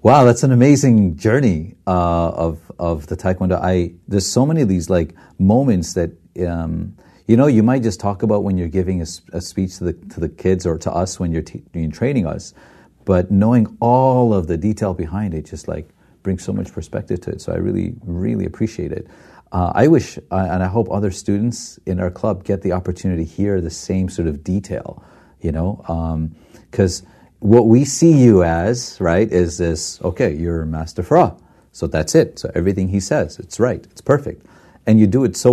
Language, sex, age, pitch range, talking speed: English, male, 40-59, 90-120 Hz, 205 wpm